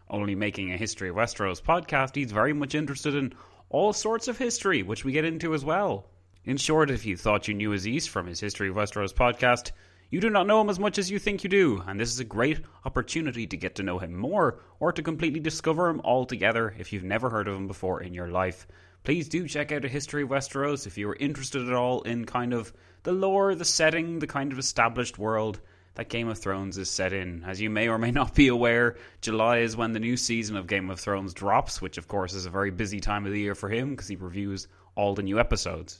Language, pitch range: English, 95-140 Hz